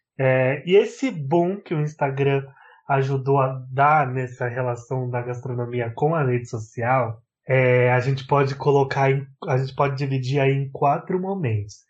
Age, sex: 20-39, male